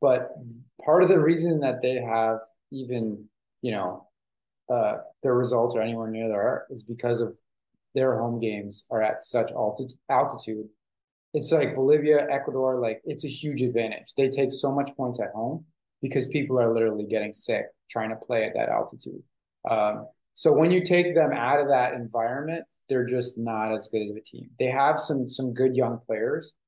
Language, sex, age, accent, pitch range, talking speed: English, male, 20-39, American, 110-135 Hz, 185 wpm